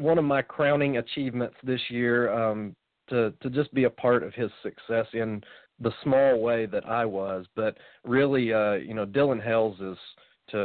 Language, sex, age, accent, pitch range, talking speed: English, male, 40-59, American, 105-130 Hz, 185 wpm